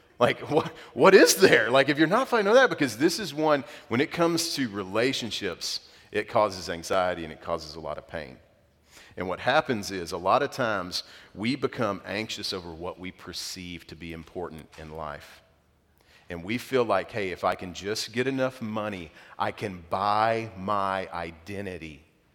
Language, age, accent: English, 40-59, American